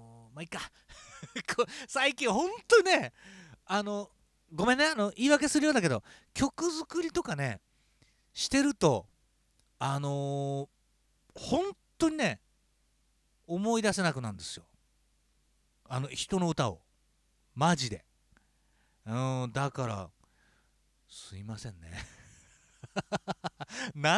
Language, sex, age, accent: Japanese, male, 40-59, native